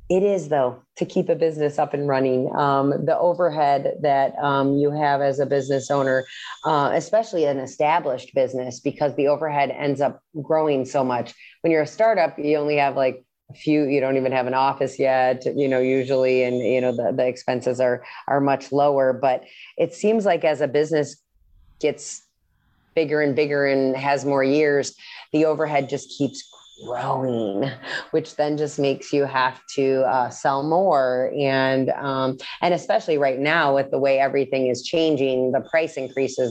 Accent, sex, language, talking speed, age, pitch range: American, female, English, 180 wpm, 30-49, 130-150 Hz